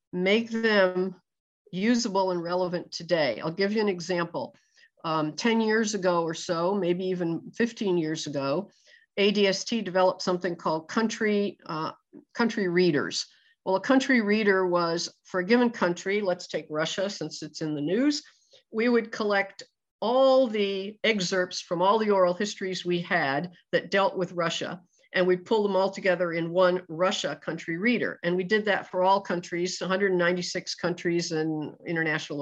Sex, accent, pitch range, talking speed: female, American, 170-210 Hz, 160 wpm